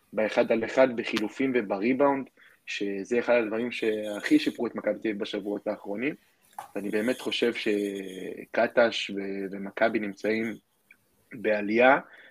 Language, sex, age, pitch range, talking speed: Hebrew, male, 20-39, 105-130 Hz, 105 wpm